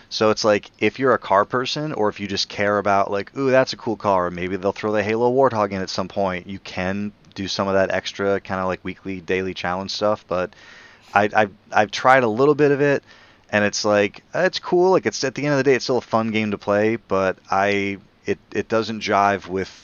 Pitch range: 90-105 Hz